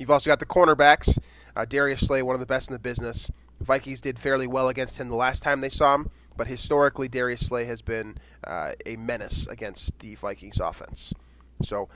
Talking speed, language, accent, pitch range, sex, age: 205 wpm, English, American, 110-140 Hz, male, 20-39